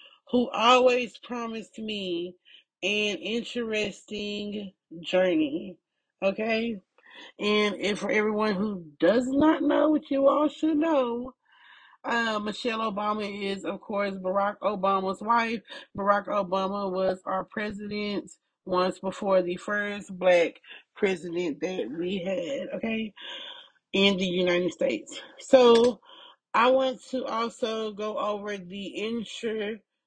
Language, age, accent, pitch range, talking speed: English, 30-49, American, 195-245 Hz, 115 wpm